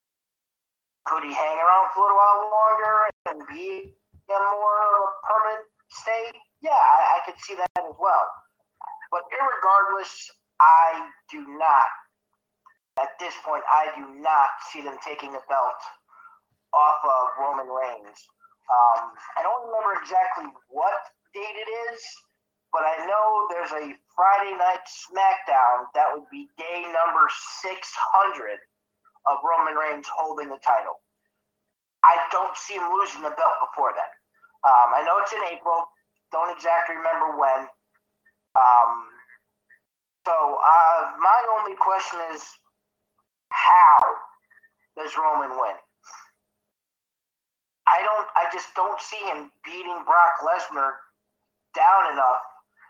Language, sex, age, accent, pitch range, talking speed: English, male, 30-49, American, 160-225 Hz, 130 wpm